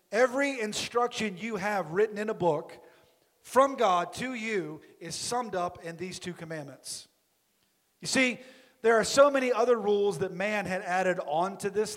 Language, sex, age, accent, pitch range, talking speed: English, male, 40-59, American, 180-235 Hz, 165 wpm